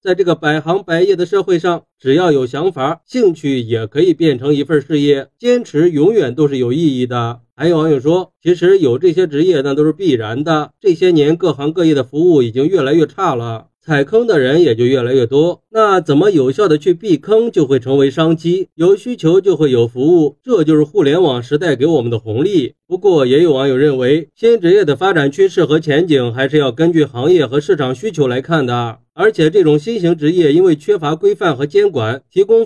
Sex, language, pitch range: male, Chinese, 135-215 Hz